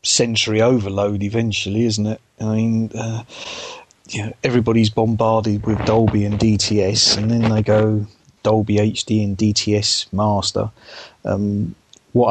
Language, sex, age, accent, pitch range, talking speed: English, male, 30-49, British, 100-115 Hz, 135 wpm